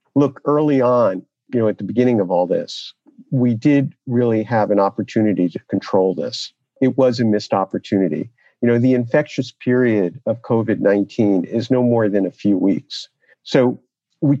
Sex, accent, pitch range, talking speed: male, American, 110-135 Hz, 170 wpm